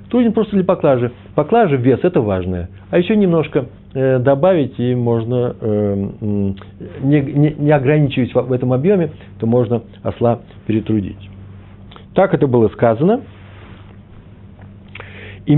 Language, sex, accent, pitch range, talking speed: Russian, male, native, 100-140 Hz, 130 wpm